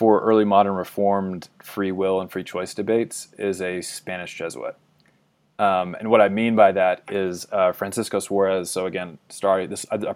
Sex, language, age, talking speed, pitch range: male, English, 20-39, 185 wpm, 95-110 Hz